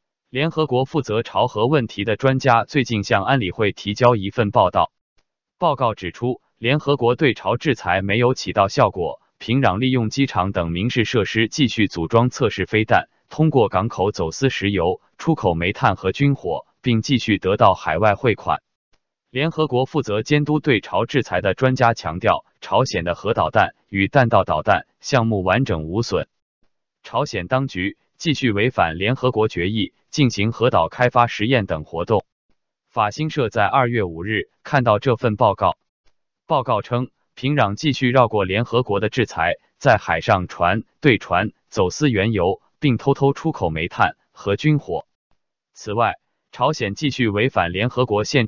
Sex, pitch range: male, 100-135 Hz